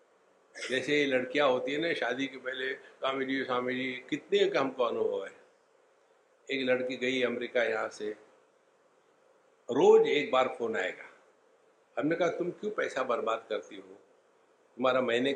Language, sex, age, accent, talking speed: English, male, 60-79, Indian, 135 wpm